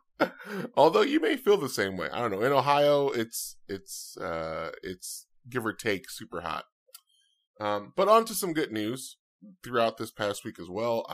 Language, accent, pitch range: English, American, 100-155 Hz